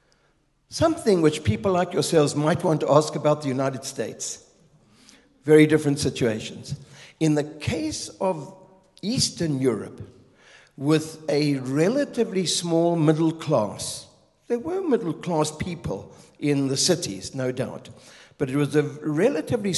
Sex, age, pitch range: male, 60-79, 135-180 Hz